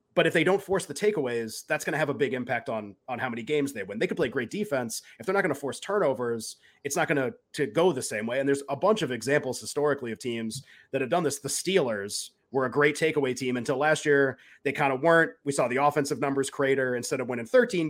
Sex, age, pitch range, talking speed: male, 30-49, 130-155 Hz, 260 wpm